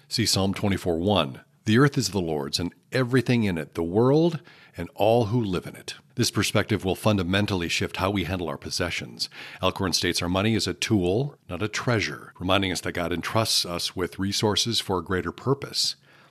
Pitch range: 85-110 Hz